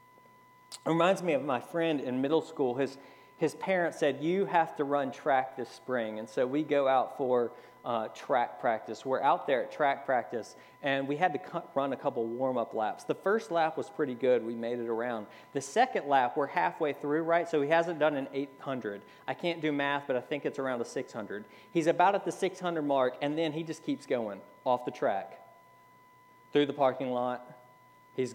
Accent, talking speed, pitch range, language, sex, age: American, 210 wpm, 130-180 Hz, English, male, 40-59